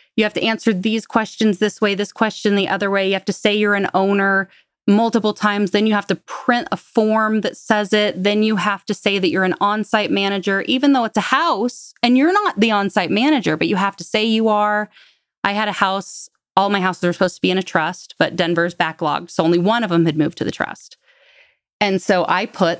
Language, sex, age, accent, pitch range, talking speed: English, female, 20-39, American, 190-235 Hz, 240 wpm